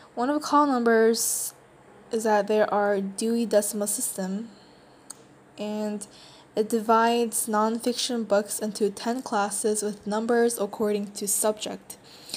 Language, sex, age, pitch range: Korean, female, 10-29, 205-230 Hz